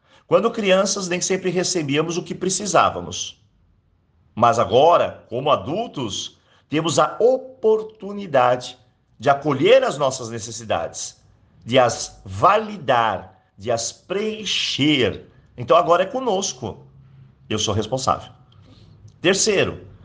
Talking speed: 100 wpm